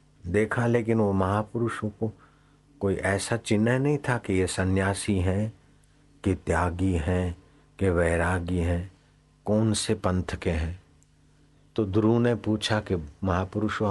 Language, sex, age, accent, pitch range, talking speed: Hindi, male, 60-79, native, 85-105 Hz, 135 wpm